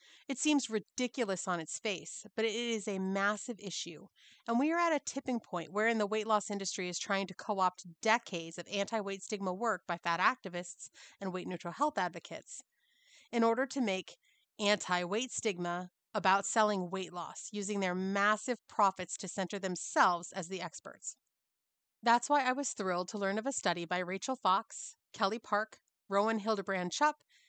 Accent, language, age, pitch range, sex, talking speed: American, English, 30-49, 185-240 Hz, female, 170 wpm